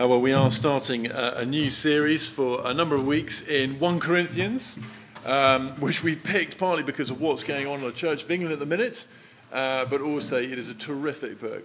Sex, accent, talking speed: male, British, 215 wpm